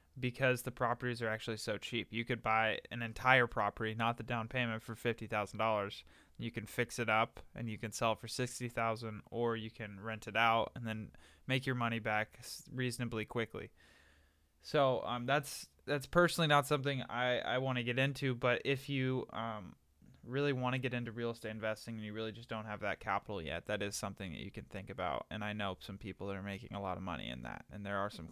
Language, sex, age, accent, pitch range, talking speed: English, male, 10-29, American, 105-125 Hz, 225 wpm